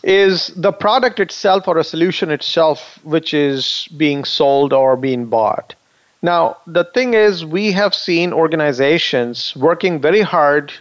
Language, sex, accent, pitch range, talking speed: English, male, Indian, 145-190 Hz, 145 wpm